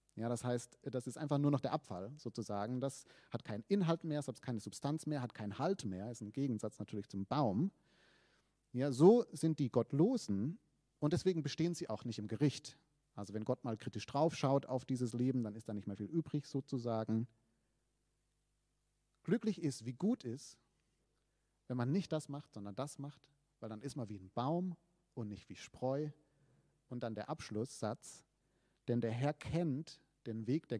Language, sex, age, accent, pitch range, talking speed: German, male, 40-59, German, 115-155 Hz, 190 wpm